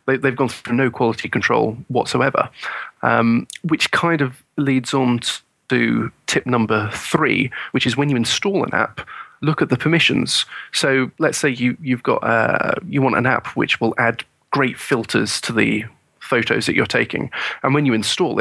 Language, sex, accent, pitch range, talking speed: English, male, British, 120-150 Hz, 175 wpm